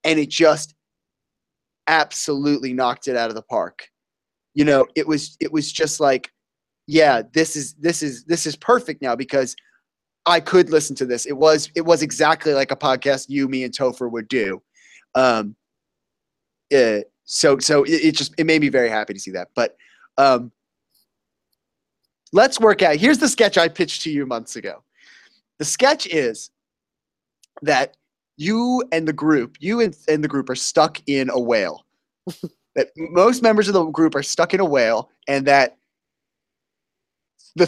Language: English